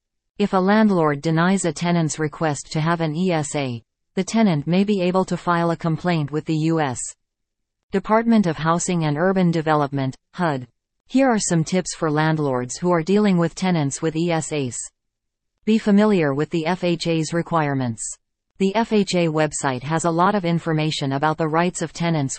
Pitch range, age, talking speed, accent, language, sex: 145-180 Hz, 40-59, 165 wpm, American, English, female